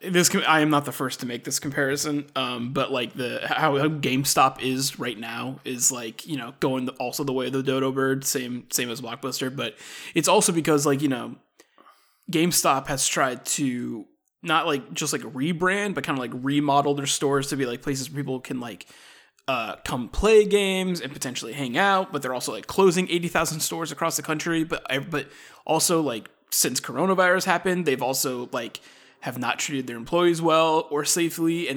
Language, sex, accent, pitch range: English, male, American, 130-160 Hz